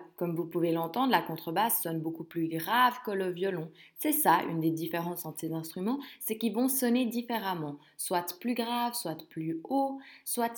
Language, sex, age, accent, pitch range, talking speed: French, female, 20-39, French, 160-240 Hz, 185 wpm